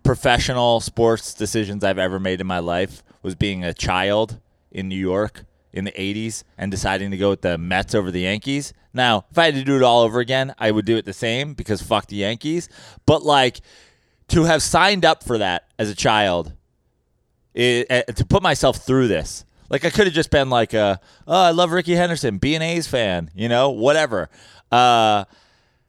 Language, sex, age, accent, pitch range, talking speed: English, male, 20-39, American, 105-145 Hz, 200 wpm